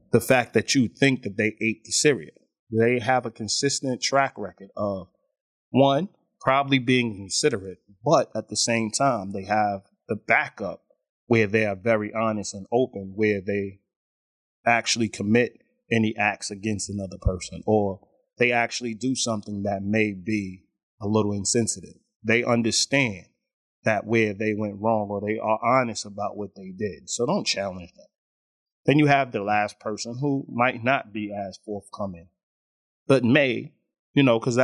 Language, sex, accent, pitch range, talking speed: English, male, American, 100-125 Hz, 160 wpm